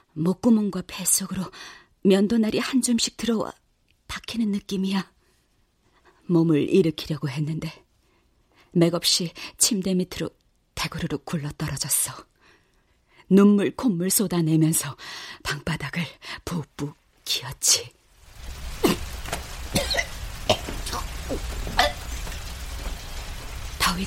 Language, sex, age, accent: Korean, female, 40-59, native